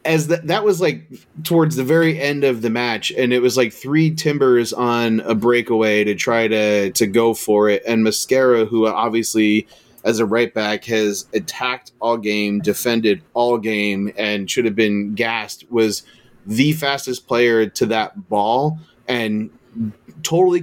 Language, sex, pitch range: English, male, 110-135 Hz